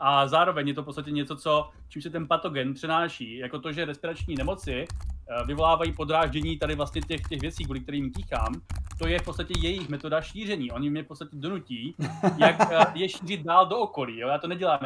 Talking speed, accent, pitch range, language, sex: 200 wpm, native, 140-170 Hz, Czech, male